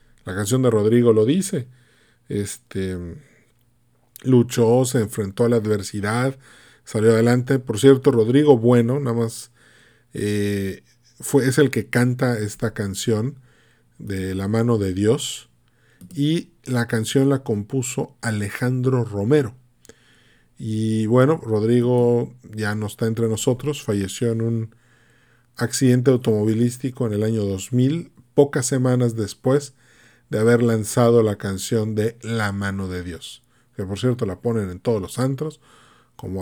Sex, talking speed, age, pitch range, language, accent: male, 130 wpm, 40-59, 110-135 Hz, Spanish, Mexican